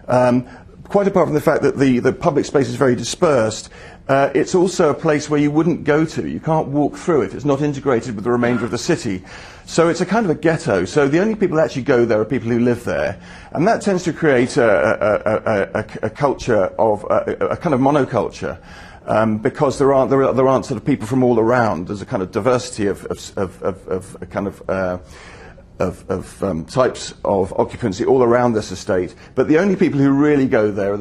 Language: English